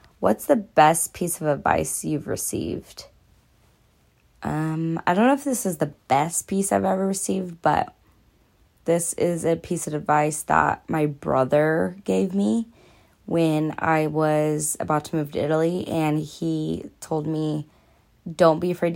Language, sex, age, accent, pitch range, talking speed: English, female, 20-39, American, 140-165 Hz, 150 wpm